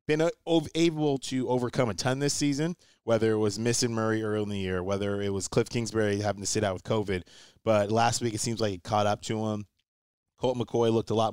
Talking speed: 235 wpm